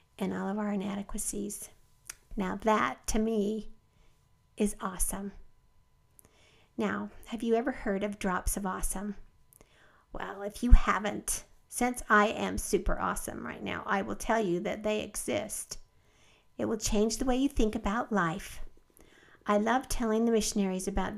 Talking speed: 150 wpm